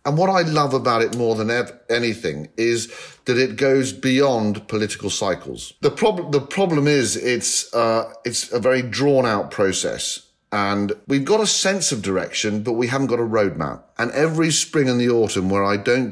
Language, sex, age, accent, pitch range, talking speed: English, male, 40-59, British, 95-130 Hz, 190 wpm